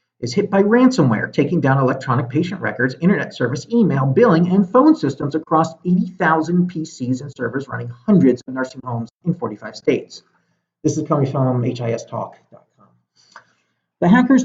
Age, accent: 40-59, American